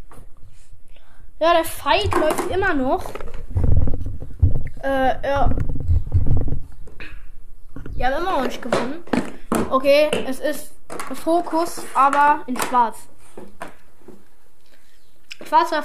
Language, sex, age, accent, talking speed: English, female, 10-29, German, 85 wpm